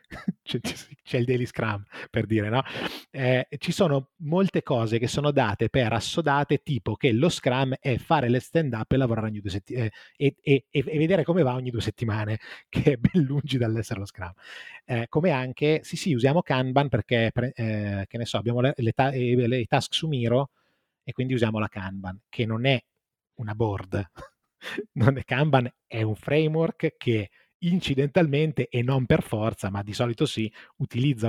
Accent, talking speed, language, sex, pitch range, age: native, 180 wpm, Italian, male, 110-140 Hz, 20-39